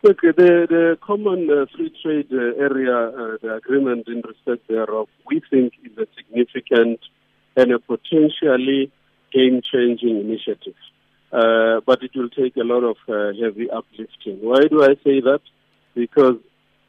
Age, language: 50-69, English